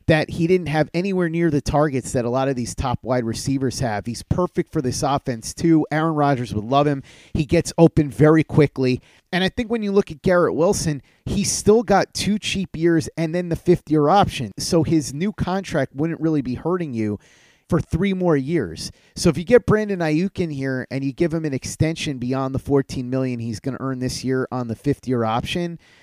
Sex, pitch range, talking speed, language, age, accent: male, 130-165 Hz, 215 wpm, English, 30-49, American